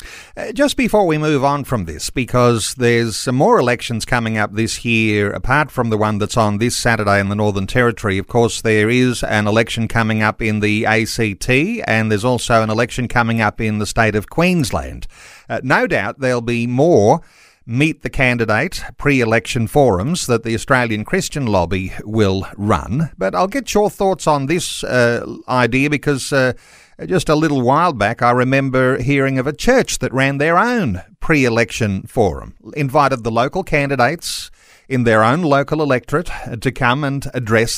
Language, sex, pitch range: English, male, 110-140 Hz